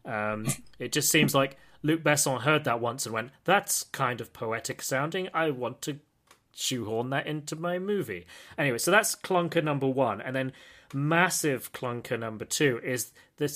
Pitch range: 125-155 Hz